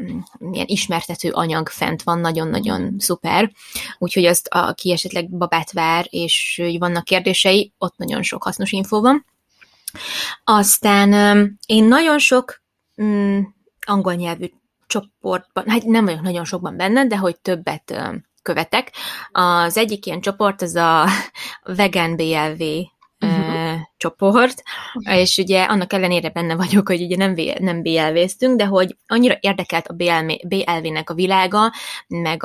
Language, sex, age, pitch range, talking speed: Hungarian, female, 20-39, 170-205 Hz, 120 wpm